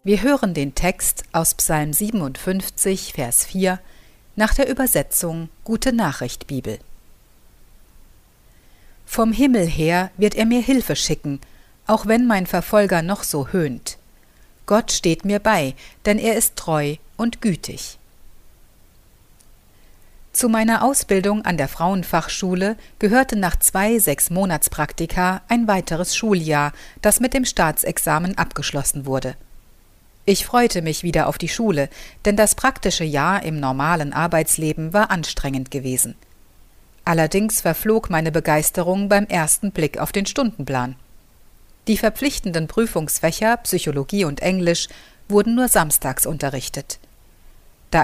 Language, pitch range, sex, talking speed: German, 150-210 Hz, female, 120 wpm